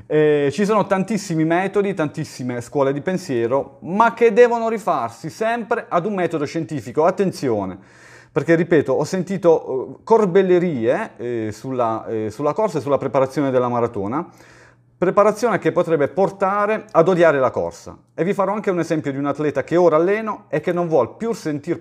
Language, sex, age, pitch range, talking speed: Italian, male, 40-59, 125-180 Hz, 165 wpm